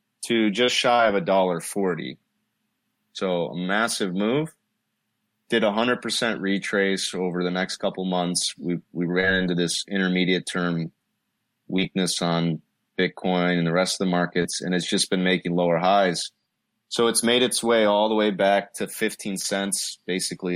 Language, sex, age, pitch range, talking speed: English, male, 30-49, 85-105 Hz, 165 wpm